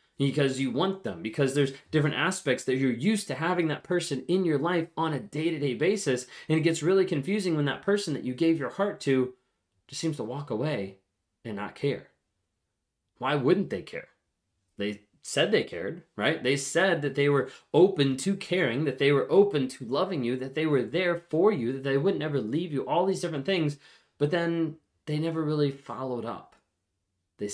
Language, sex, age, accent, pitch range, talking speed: English, male, 20-39, American, 125-165 Hz, 200 wpm